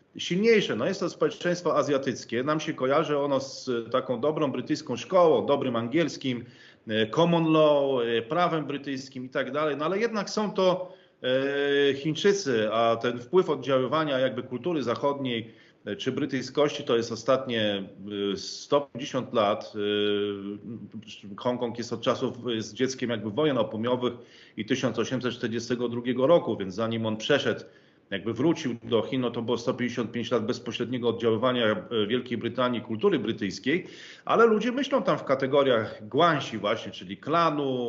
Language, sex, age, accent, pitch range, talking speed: Polish, male, 40-59, native, 115-145 Hz, 135 wpm